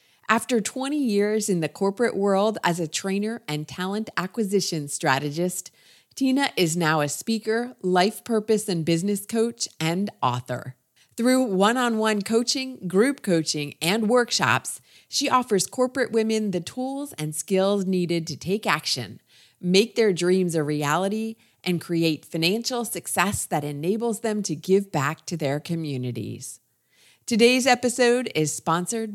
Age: 30-49